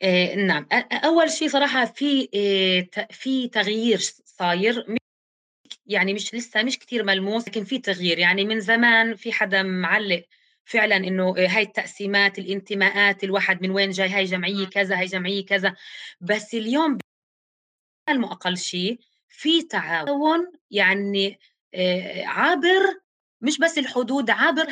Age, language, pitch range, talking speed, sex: 20-39, Arabic, 195-250 Hz, 120 wpm, female